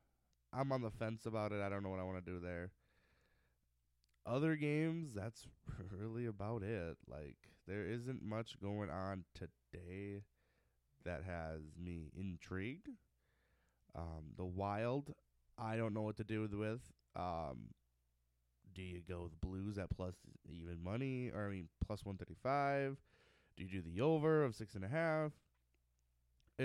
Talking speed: 145 wpm